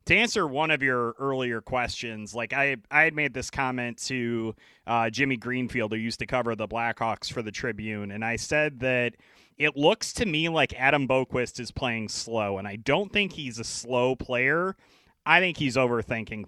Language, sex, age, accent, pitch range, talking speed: English, male, 30-49, American, 120-145 Hz, 195 wpm